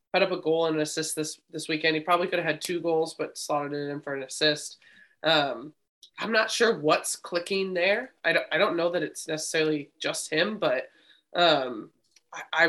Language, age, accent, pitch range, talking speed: English, 20-39, American, 150-170 Hz, 205 wpm